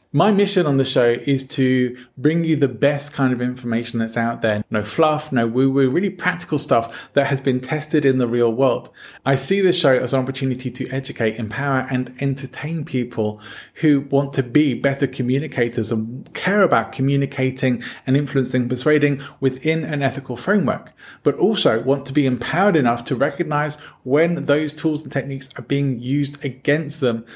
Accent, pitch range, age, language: British, 120-145 Hz, 20-39, English